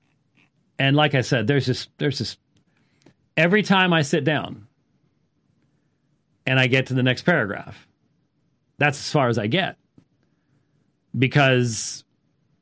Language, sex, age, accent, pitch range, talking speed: English, male, 40-59, American, 130-165 Hz, 130 wpm